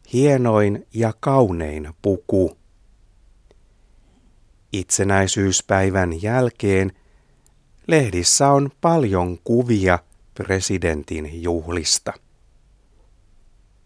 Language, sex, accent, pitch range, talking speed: Finnish, male, native, 95-120 Hz, 50 wpm